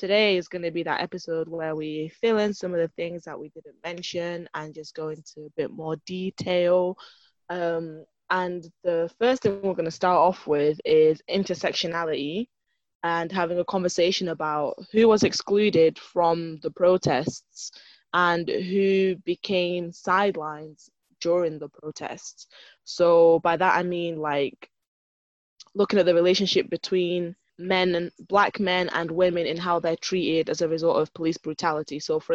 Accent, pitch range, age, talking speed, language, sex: British, 160-190 Hz, 10-29, 160 wpm, English, female